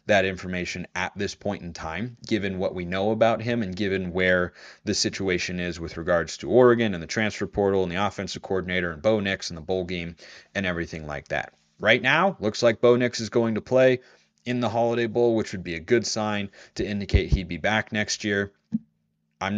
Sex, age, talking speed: male, 30-49, 215 wpm